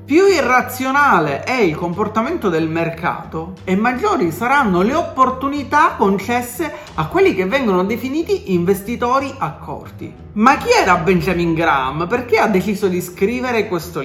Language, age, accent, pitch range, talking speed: Italian, 40-59, native, 180-265 Hz, 130 wpm